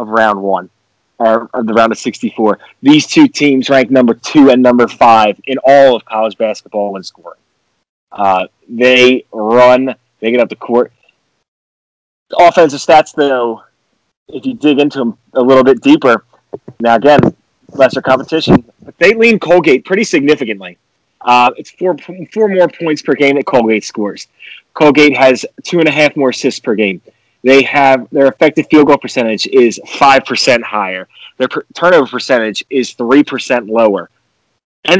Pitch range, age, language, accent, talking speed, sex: 120-170 Hz, 20-39, English, American, 160 wpm, male